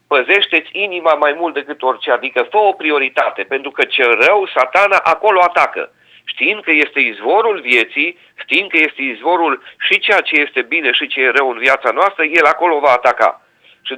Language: Romanian